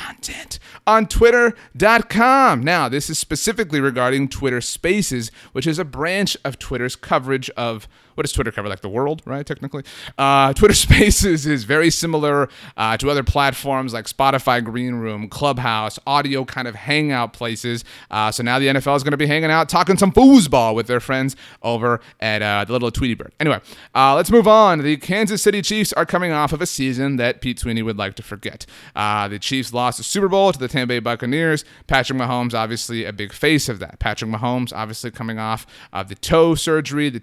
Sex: male